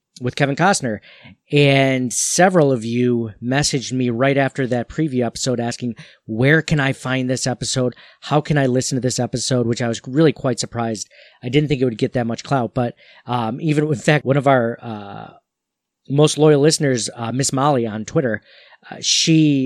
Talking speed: 190 wpm